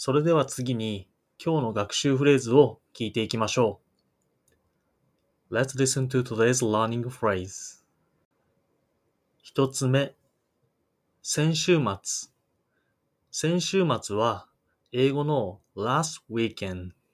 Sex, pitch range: male, 105-140 Hz